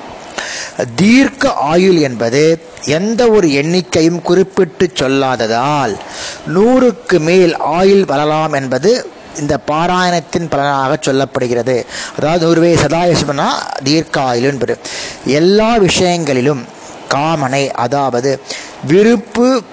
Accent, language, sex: native, Tamil, male